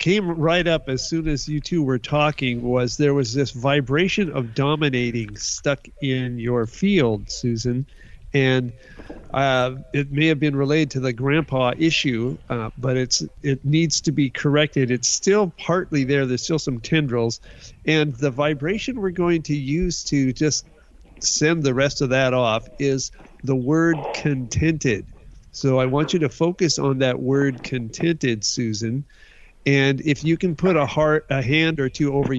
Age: 50-69